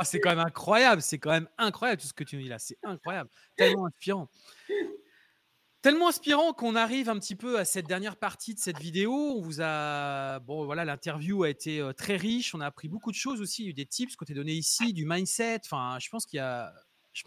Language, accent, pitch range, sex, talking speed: French, French, 145-205 Hz, male, 220 wpm